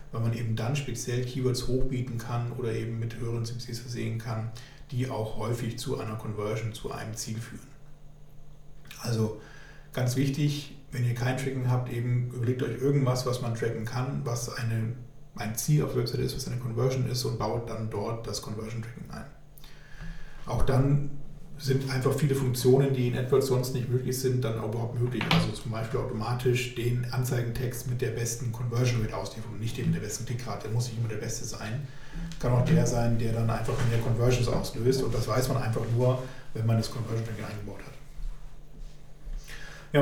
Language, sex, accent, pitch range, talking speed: German, male, German, 115-140 Hz, 185 wpm